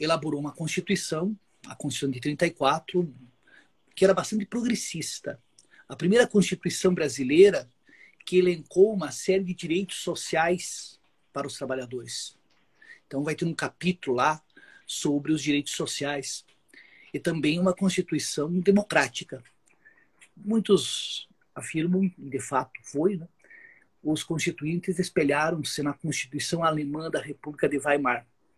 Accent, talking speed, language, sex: Brazilian, 120 wpm, Portuguese, male